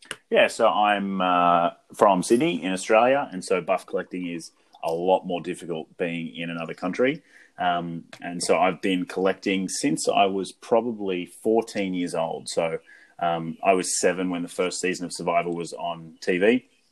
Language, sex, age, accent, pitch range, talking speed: English, male, 30-49, Australian, 85-100 Hz, 170 wpm